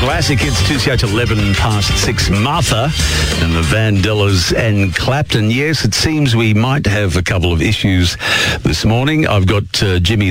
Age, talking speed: 50-69, 165 wpm